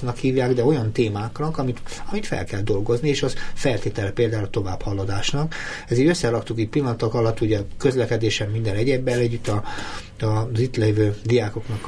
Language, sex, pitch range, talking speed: Hungarian, male, 100-125 Hz, 160 wpm